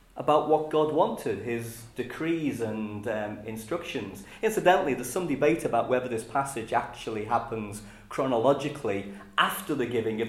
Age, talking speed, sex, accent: 40-59, 140 wpm, male, British